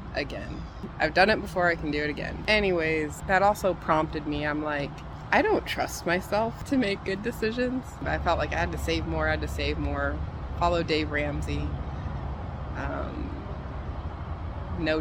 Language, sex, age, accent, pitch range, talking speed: English, female, 20-39, American, 120-165 Hz, 170 wpm